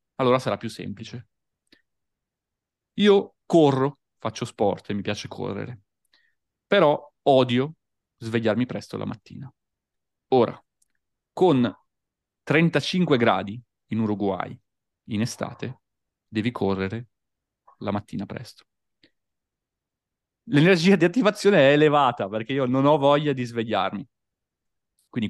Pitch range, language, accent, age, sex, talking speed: 105-145 Hz, Italian, native, 30-49, male, 105 wpm